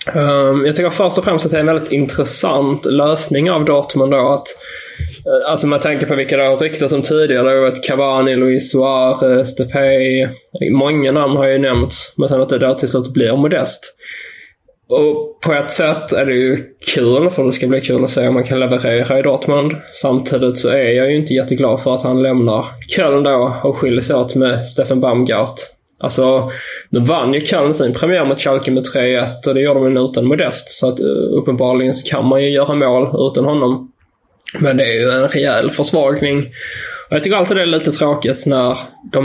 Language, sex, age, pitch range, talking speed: English, male, 20-39, 130-140 Hz, 200 wpm